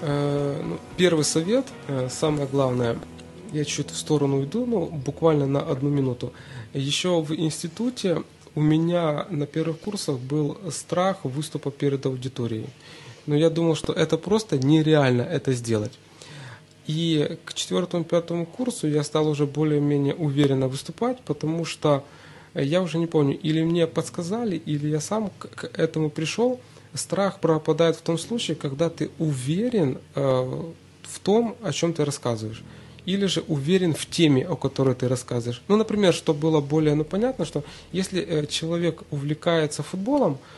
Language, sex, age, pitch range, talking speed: Russian, male, 20-39, 145-175 Hz, 145 wpm